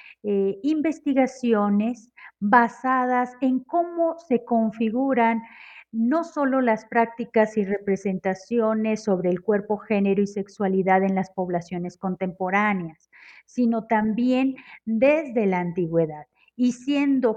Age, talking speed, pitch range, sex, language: 40-59, 105 wpm, 210-245 Hz, female, Spanish